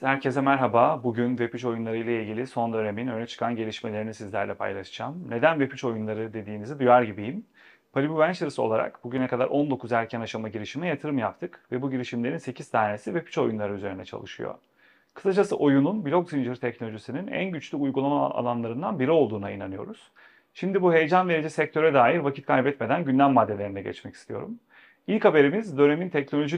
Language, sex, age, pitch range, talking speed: Turkish, male, 30-49, 115-155 Hz, 150 wpm